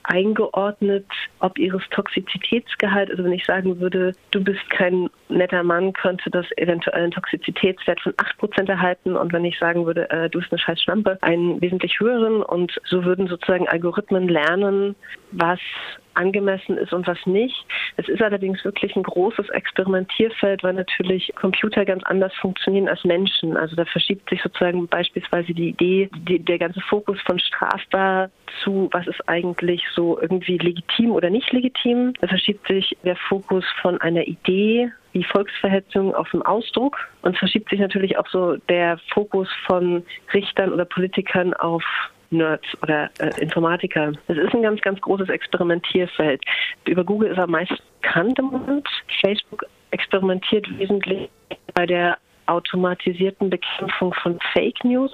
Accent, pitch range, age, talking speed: German, 175-205 Hz, 40-59, 150 wpm